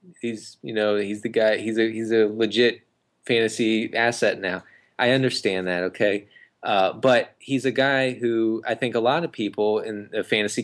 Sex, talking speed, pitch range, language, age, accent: male, 185 wpm, 100-120 Hz, English, 20-39, American